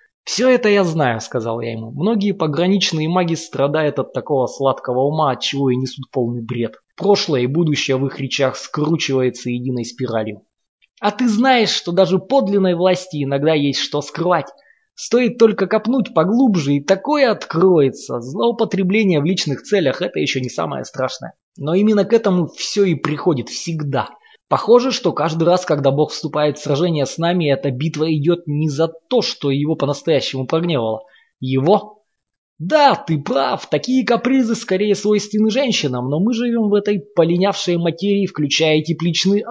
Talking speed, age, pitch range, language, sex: 160 wpm, 20-39, 140-185 Hz, Russian, male